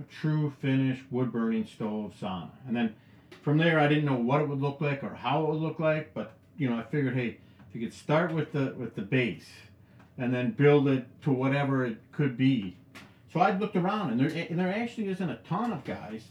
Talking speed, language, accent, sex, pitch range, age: 230 wpm, English, American, male, 125-155 Hz, 50-69